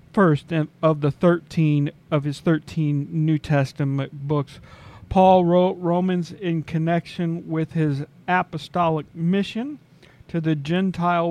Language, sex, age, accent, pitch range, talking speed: English, male, 40-59, American, 145-175 Hz, 120 wpm